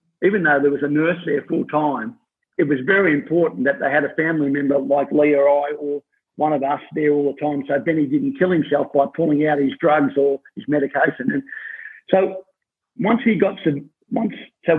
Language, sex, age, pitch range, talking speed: English, male, 50-69, 145-190 Hz, 210 wpm